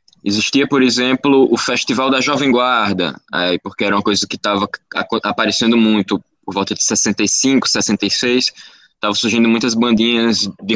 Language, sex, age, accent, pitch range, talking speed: Portuguese, male, 20-39, Brazilian, 105-145 Hz, 150 wpm